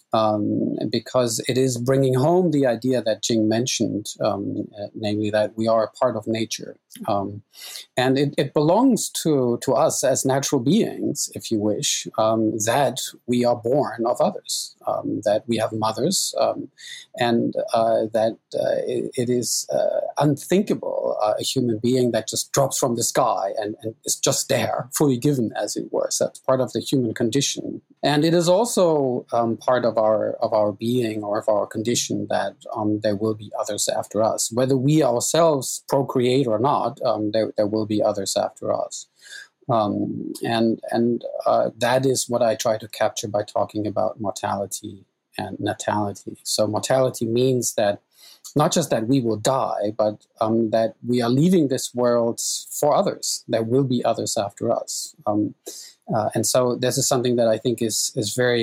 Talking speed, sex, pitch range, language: 180 wpm, male, 110-130 Hz, English